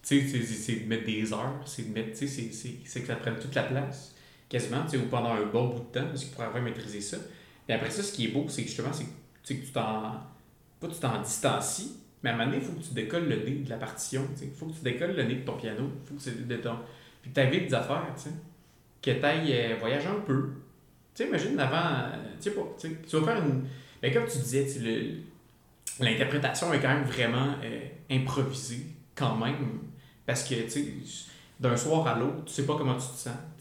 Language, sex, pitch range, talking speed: French, male, 120-145 Hz, 255 wpm